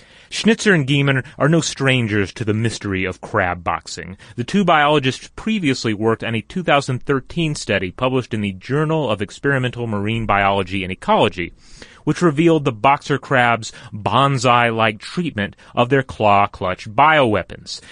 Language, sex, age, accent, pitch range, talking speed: English, male, 30-49, American, 110-150 Hz, 140 wpm